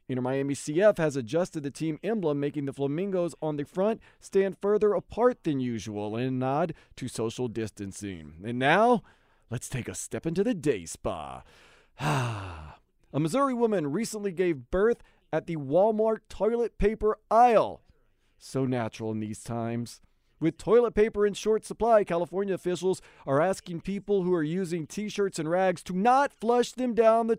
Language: English